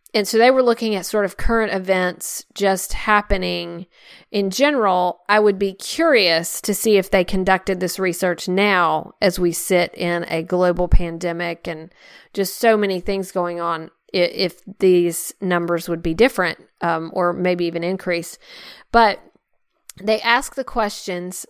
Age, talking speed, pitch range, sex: 40-59, 155 wpm, 185-220 Hz, female